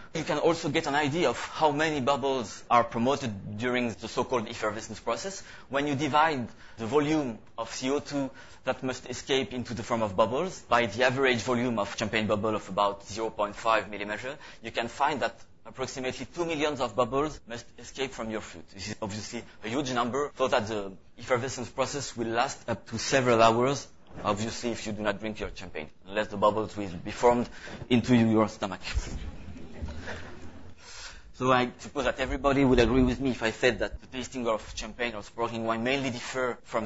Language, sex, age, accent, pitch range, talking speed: English, male, 30-49, French, 110-135 Hz, 185 wpm